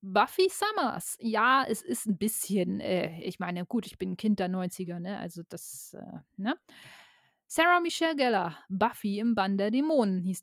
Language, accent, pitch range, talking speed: German, German, 200-240 Hz, 180 wpm